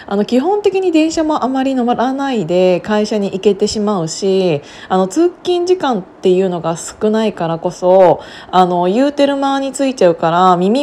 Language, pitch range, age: Japanese, 180-220 Hz, 20-39